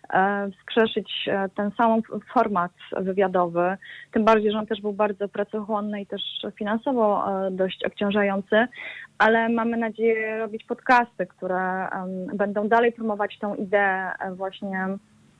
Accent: native